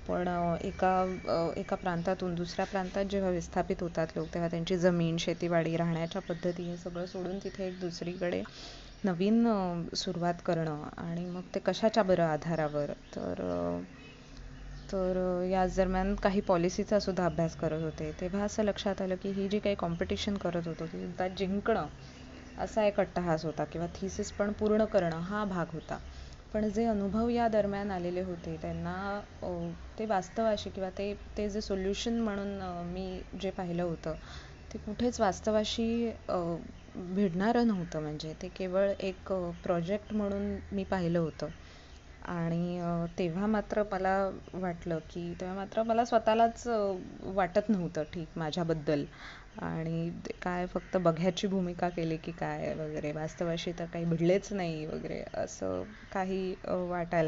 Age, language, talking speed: 20-39, Marathi, 110 wpm